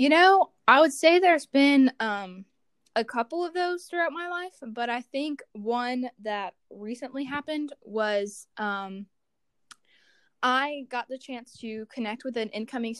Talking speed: 150 wpm